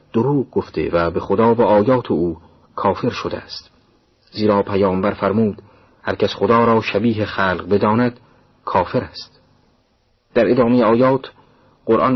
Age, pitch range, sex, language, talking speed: 40-59, 90-115 Hz, male, Persian, 140 wpm